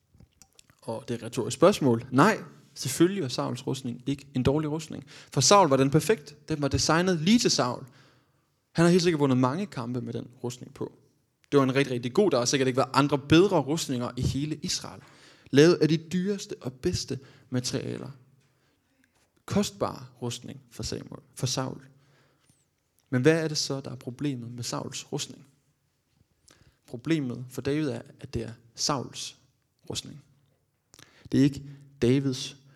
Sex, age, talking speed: male, 20-39, 165 wpm